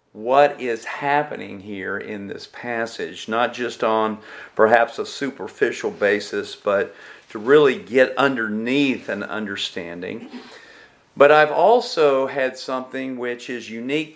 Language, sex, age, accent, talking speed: English, male, 50-69, American, 125 wpm